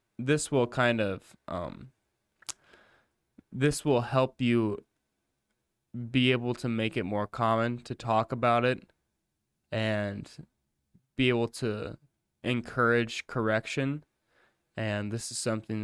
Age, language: 20-39, English